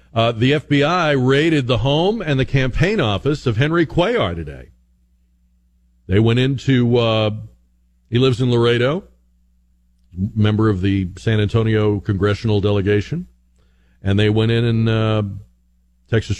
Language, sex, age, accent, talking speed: English, male, 50-69, American, 130 wpm